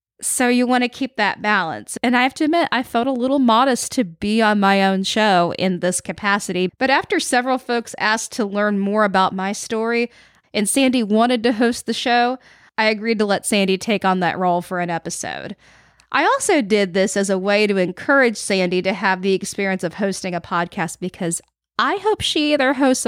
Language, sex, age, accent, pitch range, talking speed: English, female, 20-39, American, 195-255 Hz, 210 wpm